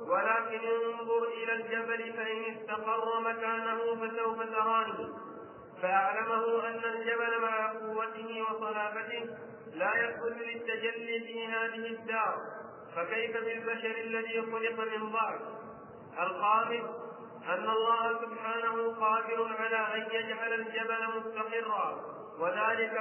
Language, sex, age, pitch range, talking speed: Arabic, male, 50-69, 220-230 Hz, 100 wpm